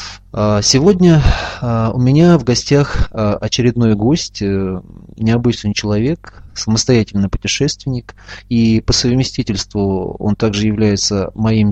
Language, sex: Russian, male